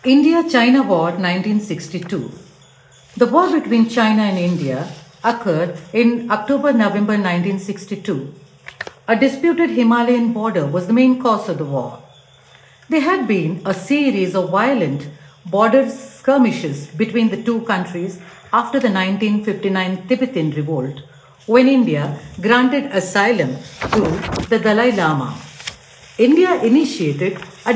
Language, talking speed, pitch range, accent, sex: English, 115 wpm, 175-250 Hz, Indian, female